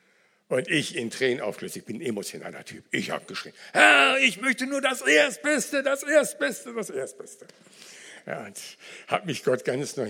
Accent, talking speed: German, 170 wpm